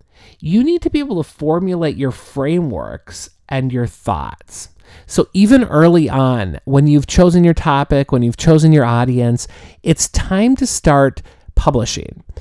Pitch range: 125-170 Hz